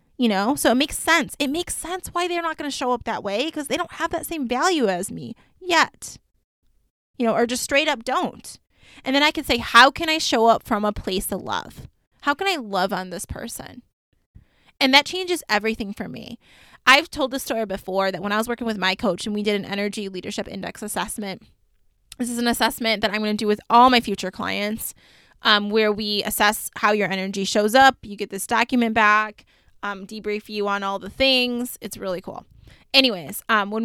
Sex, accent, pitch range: female, American, 205-255 Hz